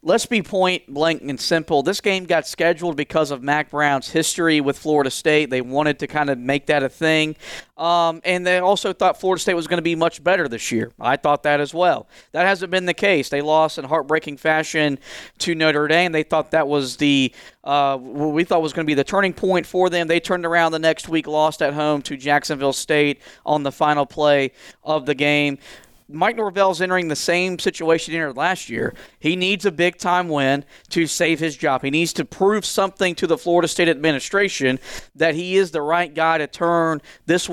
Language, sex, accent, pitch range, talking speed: English, male, American, 150-175 Hz, 215 wpm